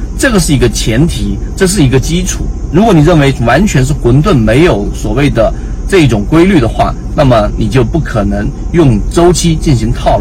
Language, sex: Chinese, male